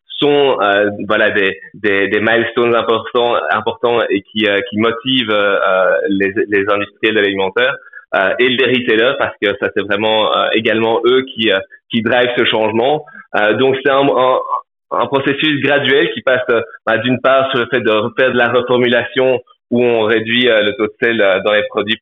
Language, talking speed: French, 195 wpm